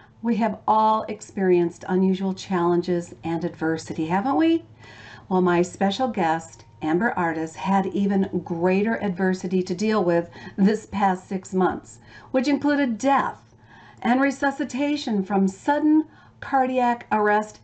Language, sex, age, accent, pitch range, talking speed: English, female, 50-69, American, 175-245 Hz, 125 wpm